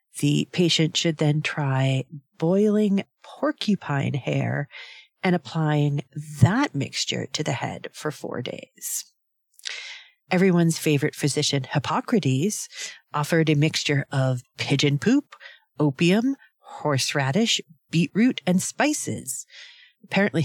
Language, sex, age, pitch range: English, female, 40-59, 140-205 Hz